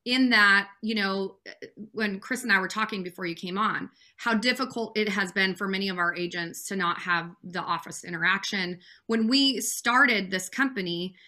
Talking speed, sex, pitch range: 185 wpm, female, 190-225 Hz